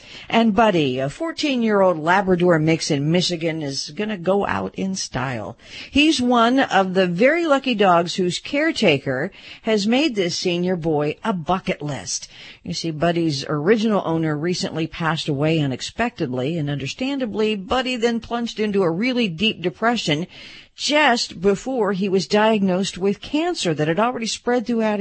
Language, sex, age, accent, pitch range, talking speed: English, female, 50-69, American, 150-230 Hz, 150 wpm